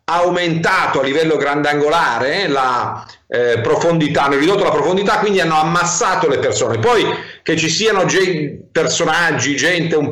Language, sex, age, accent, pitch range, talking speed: Italian, male, 50-69, native, 165-245 Hz, 150 wpm